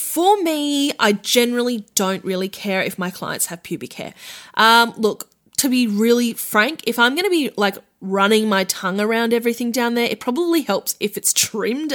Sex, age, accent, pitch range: female, 10-29, Australian, 190-265 Hz